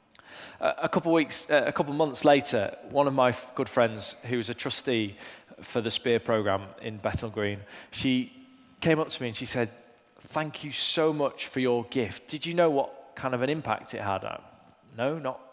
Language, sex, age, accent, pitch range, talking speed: English, male, 20-39, British, 125-160 Hz, 195 wpm